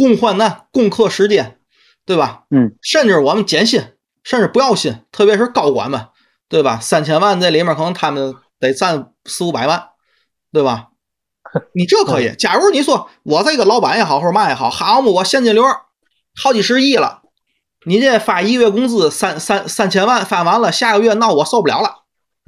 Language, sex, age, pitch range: Chinese, male, 30-49, 145-220 Hz